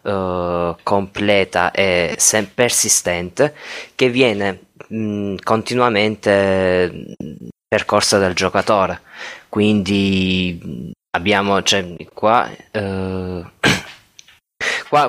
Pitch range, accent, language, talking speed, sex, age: 95-110 Hz, native, Italian, 80 wpm, male, 20-39